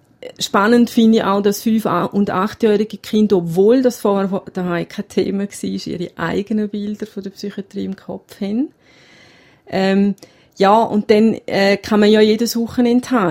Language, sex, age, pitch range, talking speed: German, female, 30-49, 180-210 Hz, 160 wpm